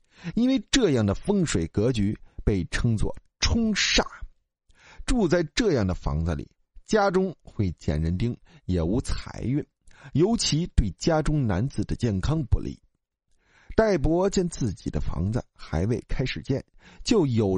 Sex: male